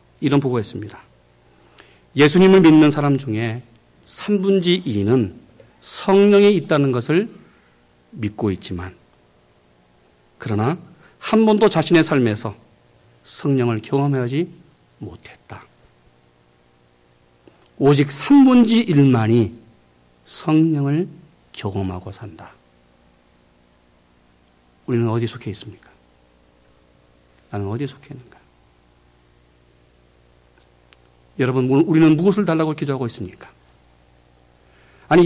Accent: native